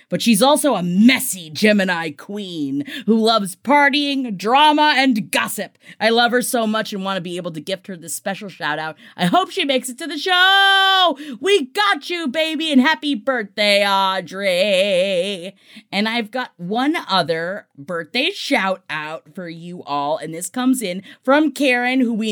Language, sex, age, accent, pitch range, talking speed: English, female, 30-49, American, 185-270 Hz, 170 wpm